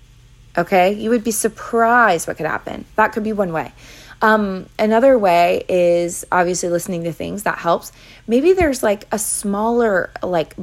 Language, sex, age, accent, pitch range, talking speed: English, female, 30-49, American, 175-235 Hz, 165 wpm